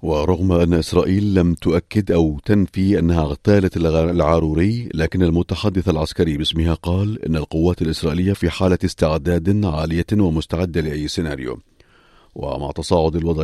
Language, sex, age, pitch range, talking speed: Arabic, male, 40-59, 80-95 Hz, 125 wpm